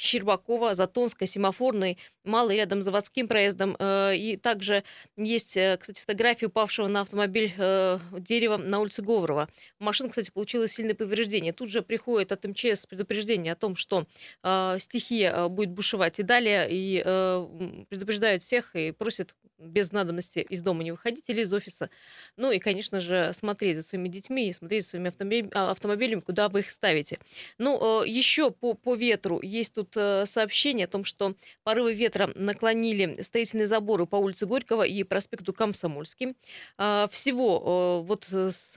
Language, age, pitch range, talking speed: Russian, 20-39, 195-225 Hz, 145 wpm